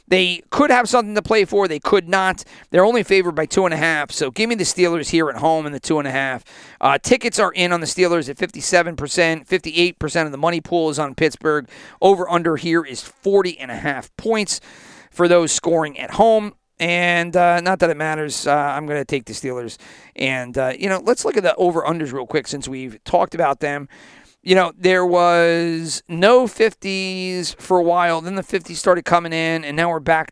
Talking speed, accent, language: 220 wpm, American, English